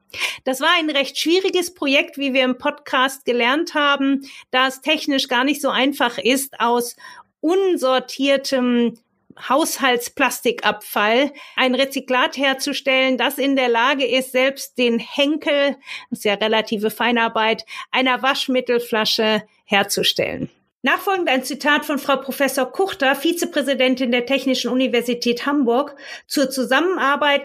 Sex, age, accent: female, 50-69, German